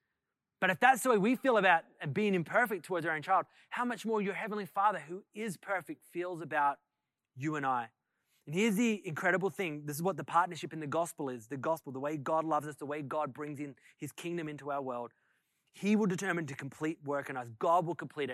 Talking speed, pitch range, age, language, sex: 230 wpm, 150-225 Hz, 20-39, English, male